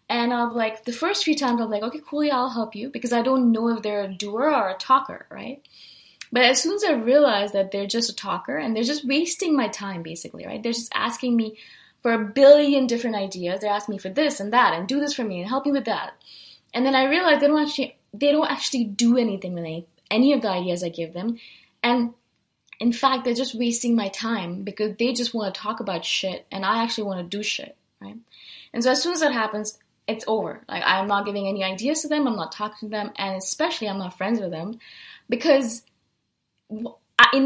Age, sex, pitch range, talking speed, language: 20-39, female, 200-270 Hz, 240 wpm, English